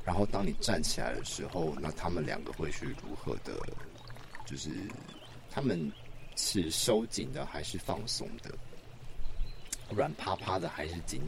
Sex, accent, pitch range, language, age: male, native, 85-125 Hz, Chinese, 50-69